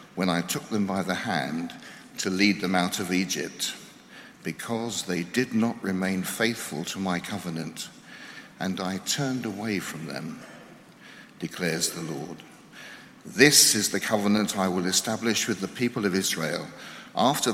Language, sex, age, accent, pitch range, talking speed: English, male, 60-79, British, 90-125 Hz, 150 wpm